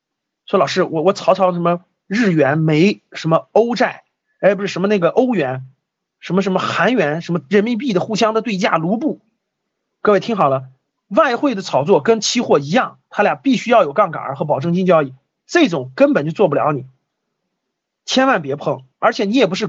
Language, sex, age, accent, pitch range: Chinese, male, 30-49, native, 170-225 Hz